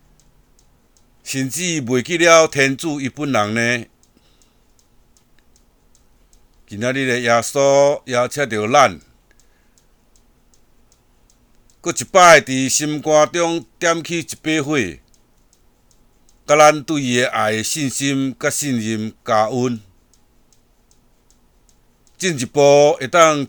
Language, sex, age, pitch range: Chinese, male, 60-79, 120-150 Hz